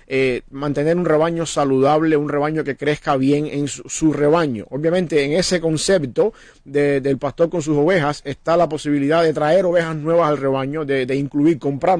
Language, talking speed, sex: English, 185 wpm, male